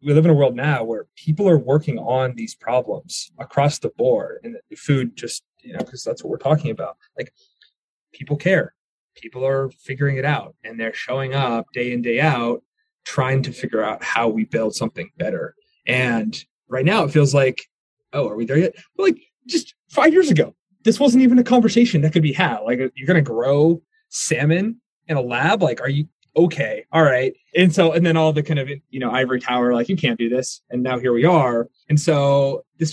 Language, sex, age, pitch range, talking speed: English, male, 20-39, 130-180 Hz, 215 wpm